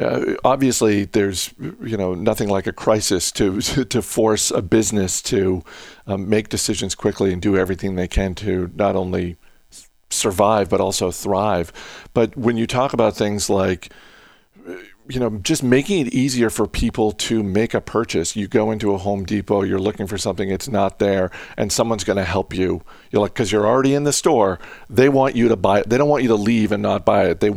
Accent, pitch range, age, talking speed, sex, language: American, 100-125 Hz, 50-69, 205 wpm, male, English